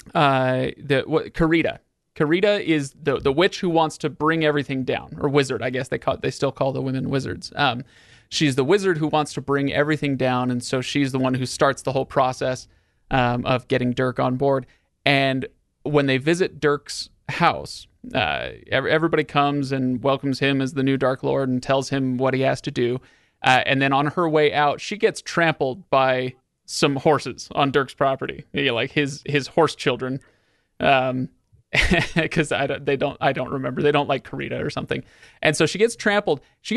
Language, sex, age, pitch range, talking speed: English, male, 30-49, 135-160 Hz, 195 wpm